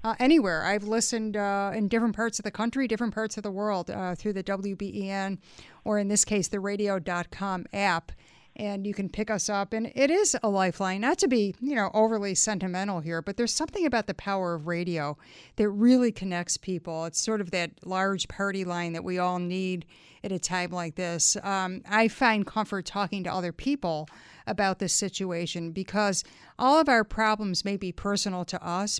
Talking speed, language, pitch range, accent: 195 wpm, English, 180-220 Hz, American